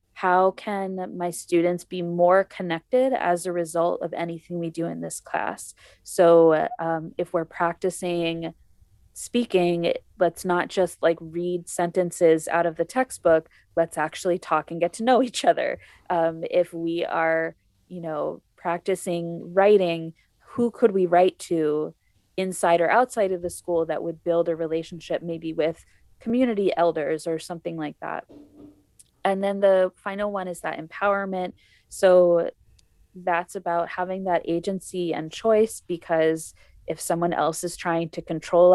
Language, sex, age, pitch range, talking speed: English, female, 20-39, 165-190 Hz, 150 wpm